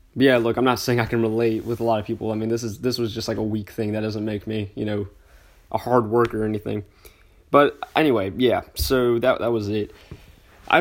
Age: 20-39